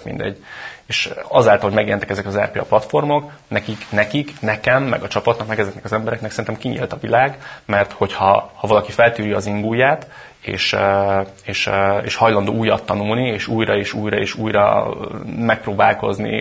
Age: 30-49